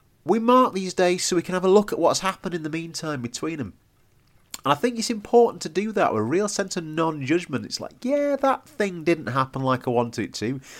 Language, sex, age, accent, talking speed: English, male, 30-49, British, 245 wpm